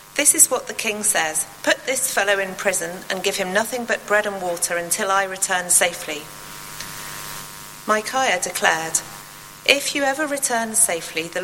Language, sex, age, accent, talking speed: English, female, 40-59, British, 165 wpm